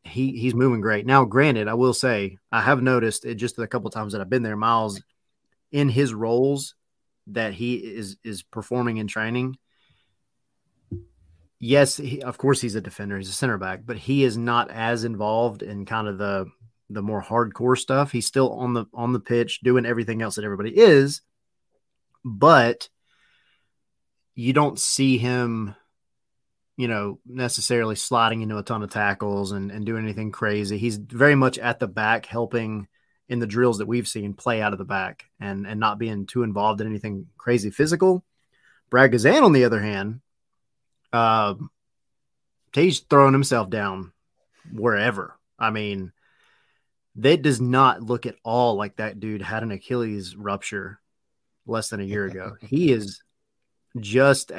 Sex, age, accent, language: male, 30-49, American, English